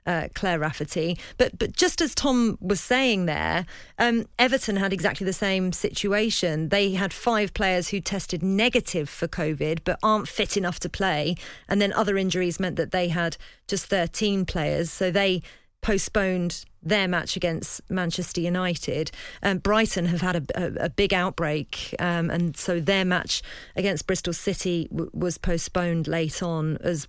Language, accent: English, British